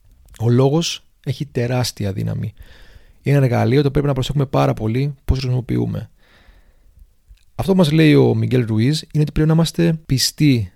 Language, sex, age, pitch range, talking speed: Greek, male, 30-49, 100-145 Hz, 160 wpm